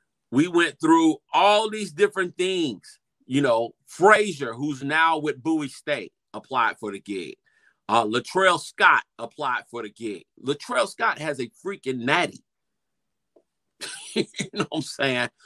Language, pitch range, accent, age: English, 115-170 Hz, American, 40-59